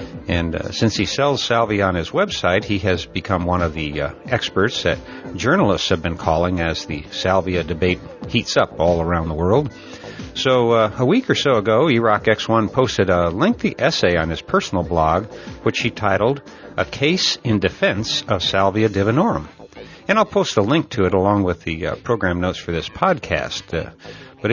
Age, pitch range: 60-79, 90-120 Hz